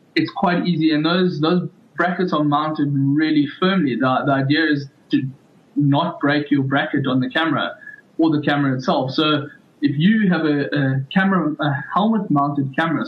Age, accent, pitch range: 20-39, South African, 140-165 Hz